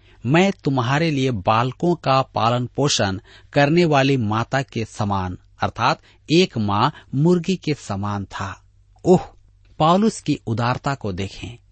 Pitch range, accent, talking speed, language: 105-145 Hz, native, 130 wpm, Hindi